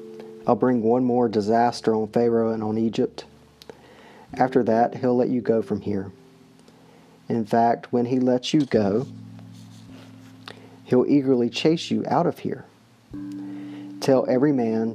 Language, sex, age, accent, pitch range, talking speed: English, male, 40-59, American, 110-130 Hz, 140 wpm